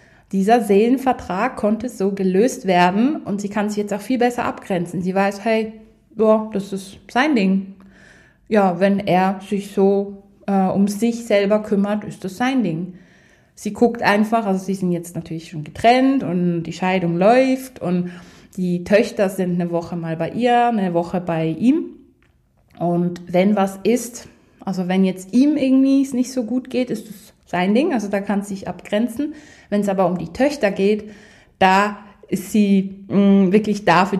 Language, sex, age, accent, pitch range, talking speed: German, female, 20-39, German, 180-220 Hz, 180 wpm